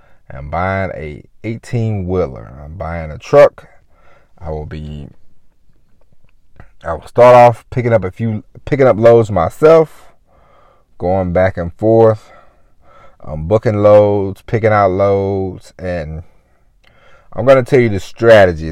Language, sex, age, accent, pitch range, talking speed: English, male, 30-49, American, 85-115 Hz, 130 wpm